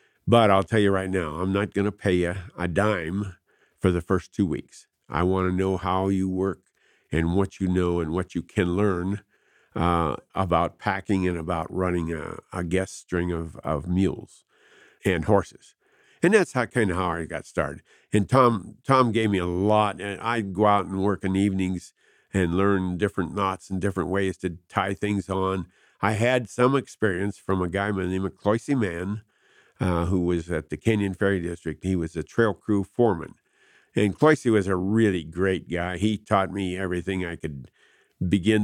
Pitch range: 90-105 Hz